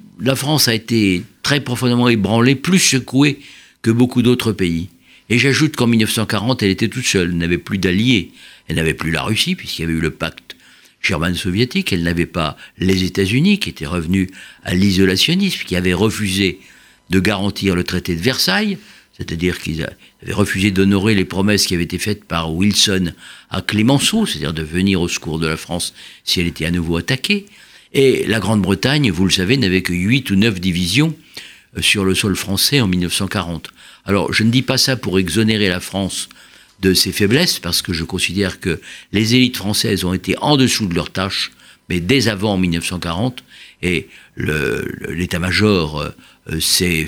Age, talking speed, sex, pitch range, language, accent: 50-69, 180 wpm, male, 90-120 Hz, French, French